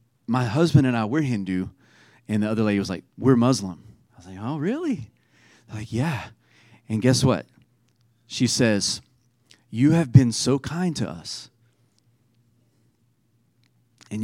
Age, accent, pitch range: 30-49, American, 115-140 Hz